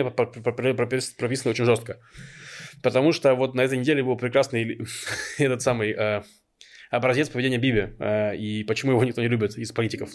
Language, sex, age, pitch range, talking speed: Russian, male, 20-39, 110-150 Hz, 155 wpm